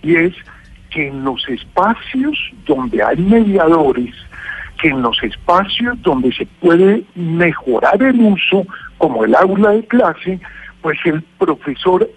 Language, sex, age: Spanish, male, 60-79